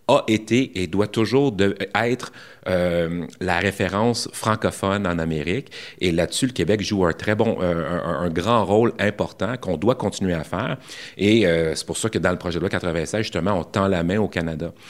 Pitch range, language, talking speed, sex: 85-115 Hz, French, 200 wpm, male